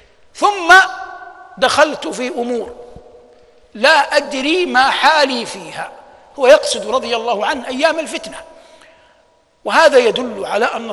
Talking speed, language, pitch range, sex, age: 110 wpm, Arabic, 210-300 Hz, male, 60-79